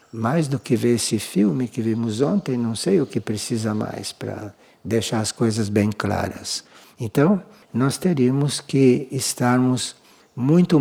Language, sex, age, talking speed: Portuguese, male, 60-79, 150 wpm